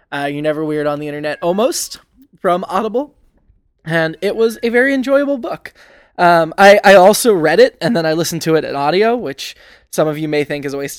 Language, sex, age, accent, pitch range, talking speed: English, male, 20-39, American, 155-215 Hz, 220 wpm